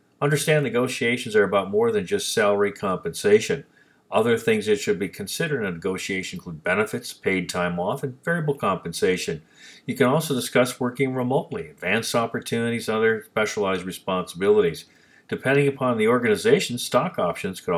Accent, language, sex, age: American, English, male, 50-69